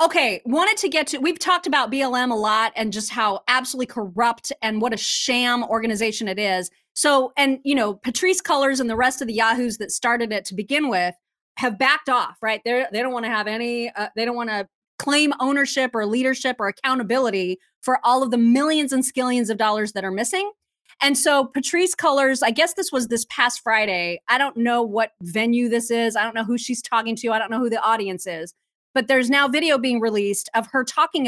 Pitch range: 225-295 Hz